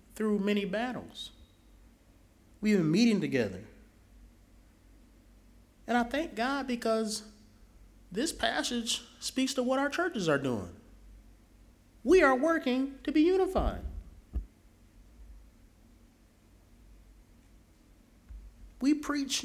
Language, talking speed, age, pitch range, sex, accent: English, 90 wpm, 30-49, 160-260 Hz, male, American